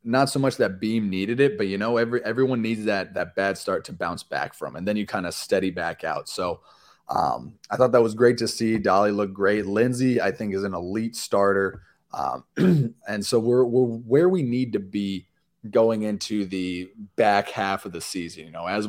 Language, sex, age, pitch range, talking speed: English, male, 20-39, 95-125 Hz, 220 wpm